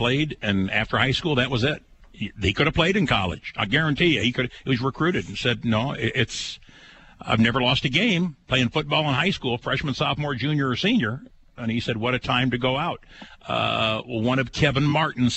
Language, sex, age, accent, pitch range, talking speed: English, male, 60-79, American, 110-145 Hz, 220 wpm